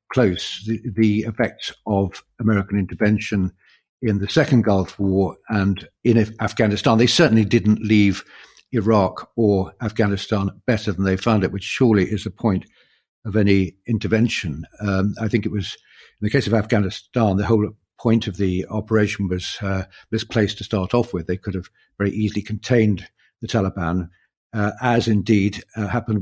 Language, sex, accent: English, male, British